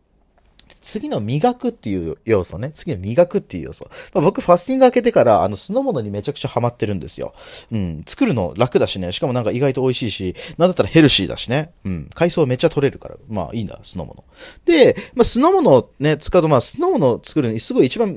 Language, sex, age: Japanese, male, 30-49